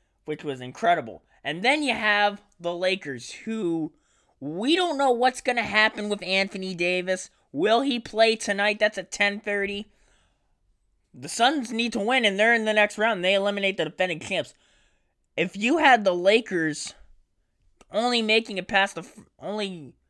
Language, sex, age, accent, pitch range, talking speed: English, male, 20-39, American, 155-205 Hz, 165 wpm